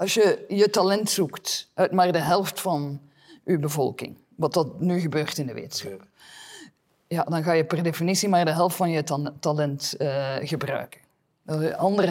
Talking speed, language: 185 wpm, Dutch